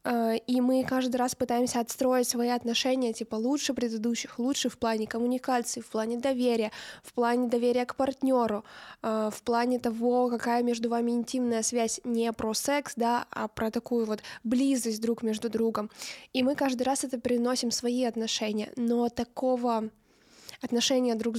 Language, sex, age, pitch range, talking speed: Russian, female, 20-39, 230-255 Hz, 150 wpm